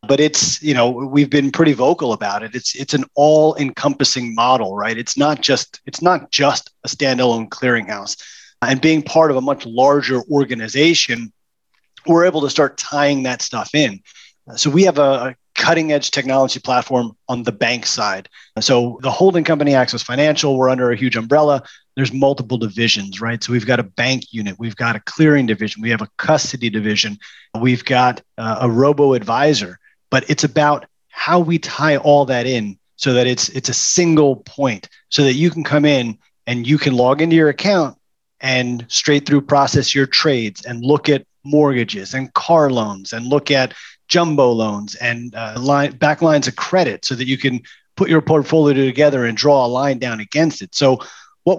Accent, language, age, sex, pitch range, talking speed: American, English, 30-49, male, 120-150 Hz, 190 wpm